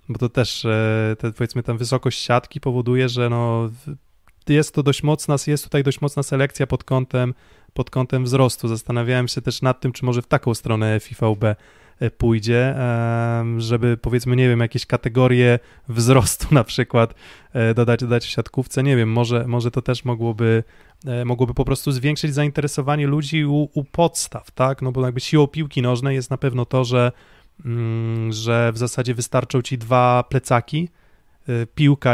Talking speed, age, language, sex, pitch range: 160 wpm, 20-39, Polish, male, 115-135 Hz